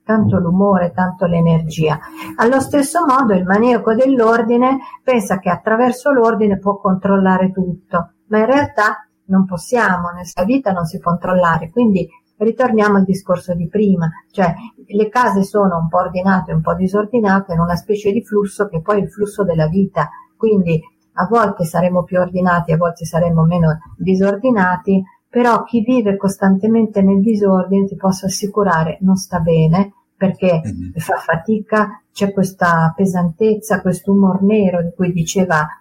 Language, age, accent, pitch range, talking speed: Italian, 50-69, native, 180-215 Hz, 155 wpm